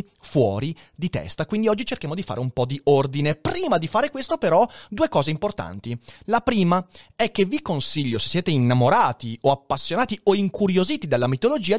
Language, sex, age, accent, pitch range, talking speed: Italian, male, 30-49, native, 140-215 Hz, 180 wpm